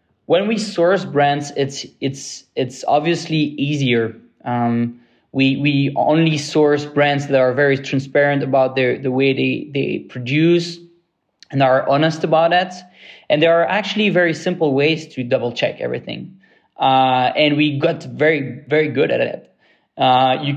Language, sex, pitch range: English, male, 130-155 Hz